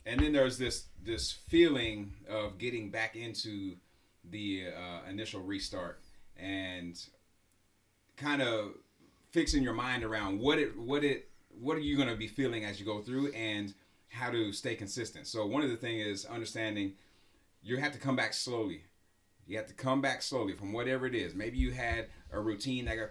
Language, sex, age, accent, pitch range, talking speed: English, male, 30-49, American, 95-115 Hz, 185 wpm